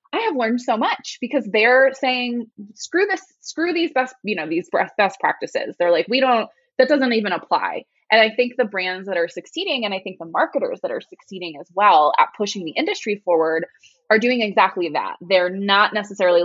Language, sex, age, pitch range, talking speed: English, female, 20-39, 180-255 Hz, 205 wpm